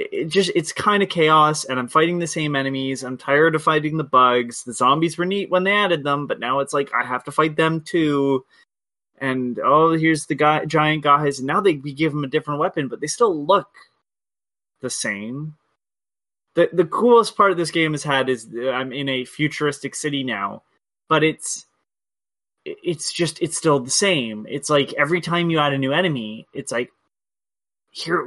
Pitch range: 140-175 Hz